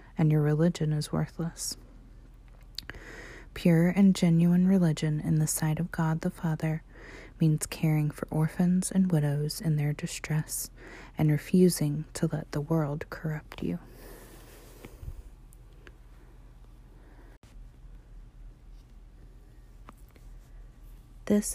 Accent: American